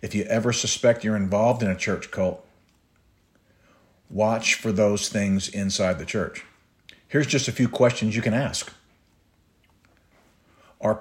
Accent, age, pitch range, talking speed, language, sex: American, 50-69, 100-125 Hz, 140 wpm, English, male